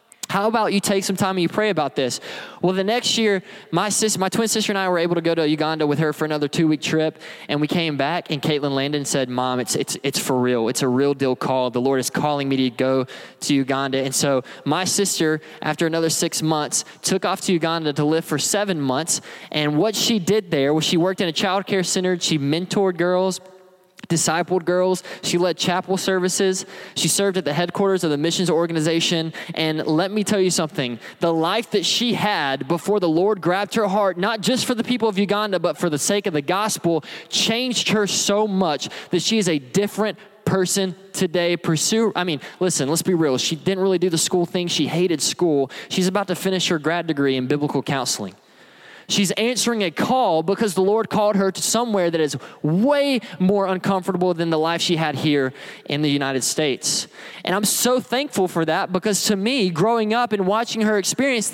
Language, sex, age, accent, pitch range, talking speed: English, male, 20-39, American, 155-205 Hz, 215 wpm